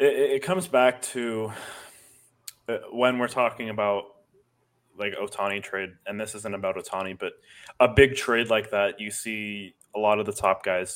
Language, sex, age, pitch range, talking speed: English, male, 20-39, 100-125 Hz, 165 wpm